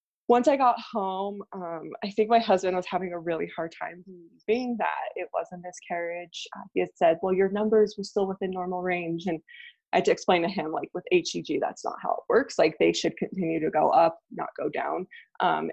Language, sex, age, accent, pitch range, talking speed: English, female, 20-39, American, 170-215 Hz, 225 wpm